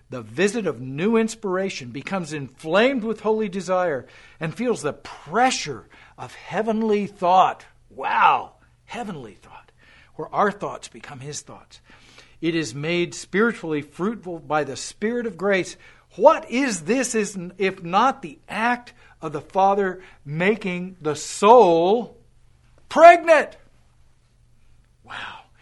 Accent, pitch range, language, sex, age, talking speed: American, 155-235 Hz, English, male, 50-69, 120 wpm